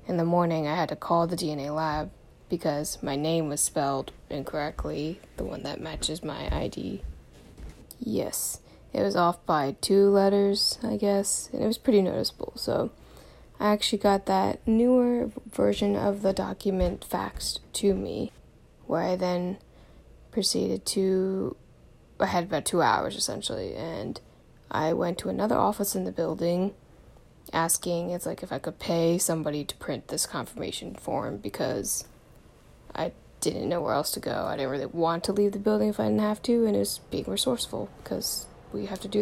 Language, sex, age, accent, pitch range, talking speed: English, female, 20-39, American, 155-200 Hz, 175 wpm